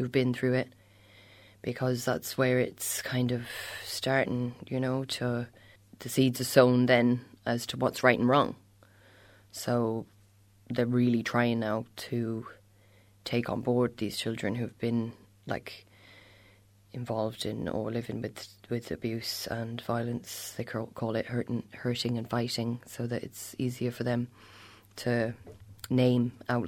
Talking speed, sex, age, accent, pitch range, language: 140 wpm, female, 20-39, Irish, 110-125 Hz, English